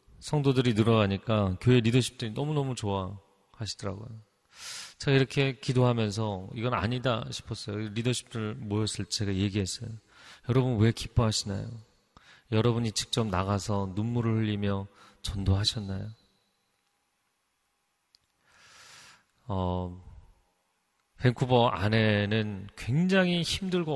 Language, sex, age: Korean, male, 30-49